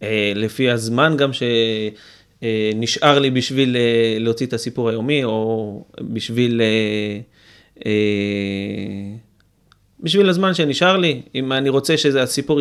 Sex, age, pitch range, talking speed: male, 30-49, 115-165 Hz, 120 wpm